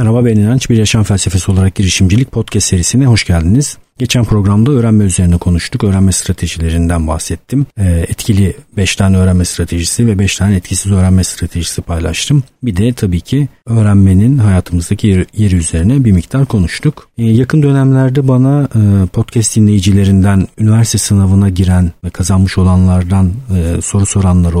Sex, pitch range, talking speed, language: male, 90-120 Hz, 135 wpm, Turkish